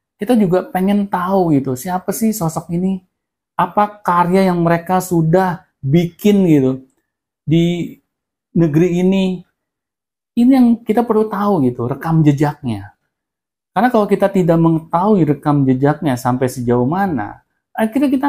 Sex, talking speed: male, 130 wpm